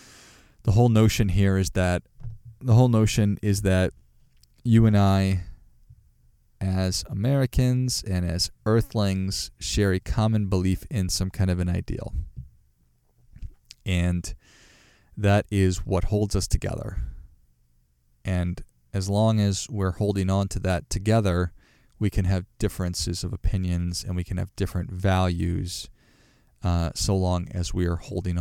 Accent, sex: American, male